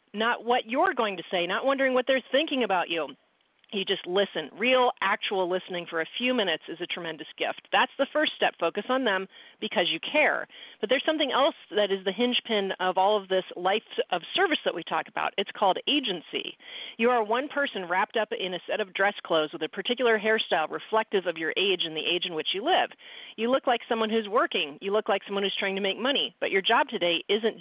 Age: 40-59